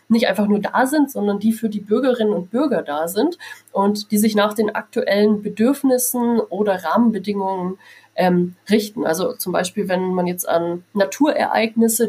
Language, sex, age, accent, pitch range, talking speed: German, female, 30-49, German, 190-230 Hz, 165 wpm